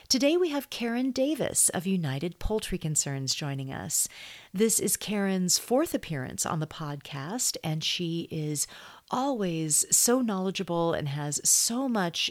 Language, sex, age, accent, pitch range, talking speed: English, female, 40-59, American, 155-215 Hz, 140 wpm